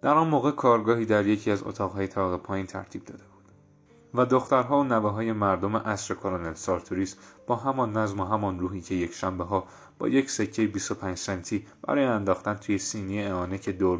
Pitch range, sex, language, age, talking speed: 95-115 Hz, male, Persian, 30-49, 180 wpm